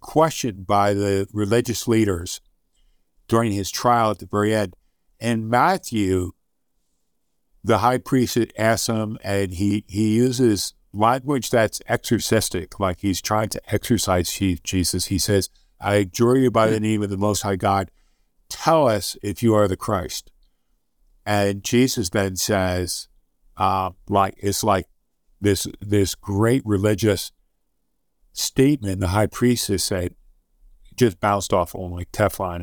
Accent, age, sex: American, 60-79, male